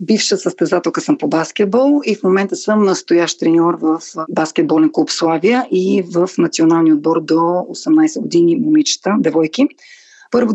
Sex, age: female, 30-49